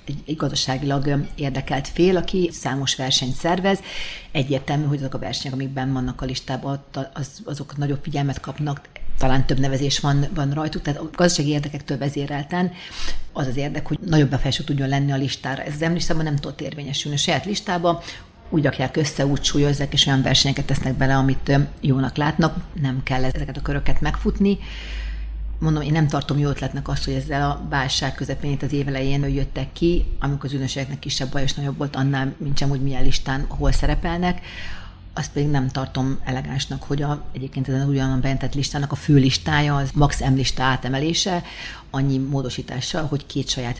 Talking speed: 170 wpm